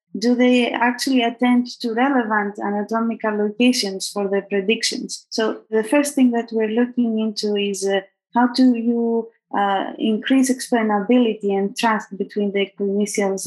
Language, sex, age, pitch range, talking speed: English, female, 20-39, 205-240 Hz, 145 wpm